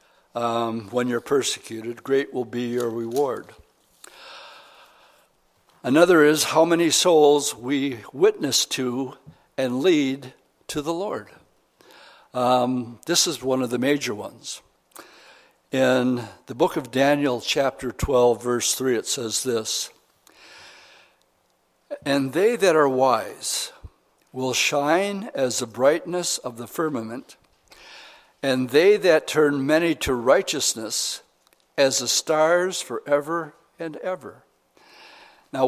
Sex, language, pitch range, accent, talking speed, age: male, English, 125-155 Hz, American, 115 wpm, 60-79